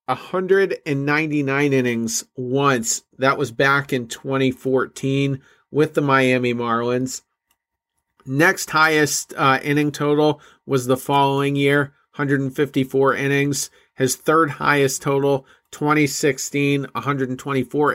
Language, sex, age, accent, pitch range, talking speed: English, male, 40-59, American, 130-150 Hz, 95 wpm